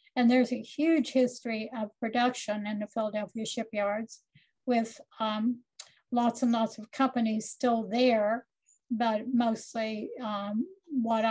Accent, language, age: American, English, 60-79